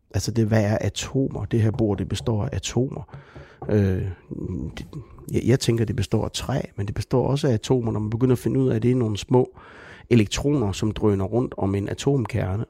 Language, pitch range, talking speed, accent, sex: Danish, 100-120 Hz, 200 wpm, native, male